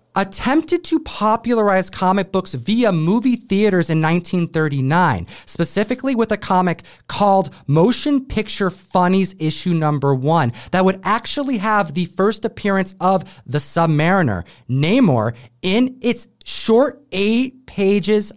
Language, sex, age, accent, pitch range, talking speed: English, male, 30-49, American, 175-240 Hz, 120 wpm